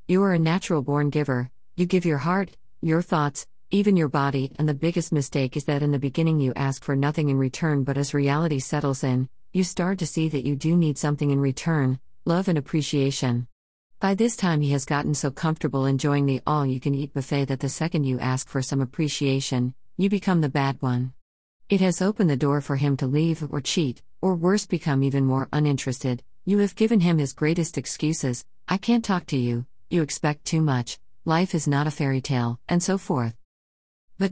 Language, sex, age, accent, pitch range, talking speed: English, female, 50-69, American, 135-170 Hz, 210 wpm